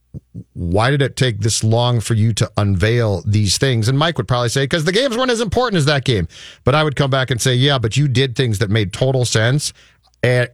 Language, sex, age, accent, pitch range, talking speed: English, male, 40-59, American, 110-150 Hz, 245 wpm